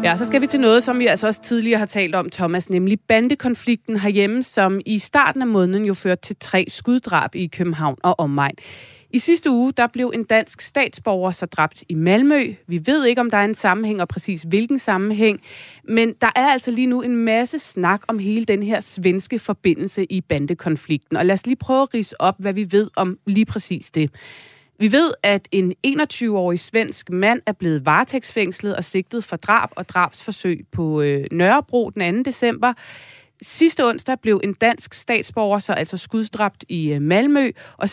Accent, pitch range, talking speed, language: native, 180-235 Hz, 190 wpm, Danish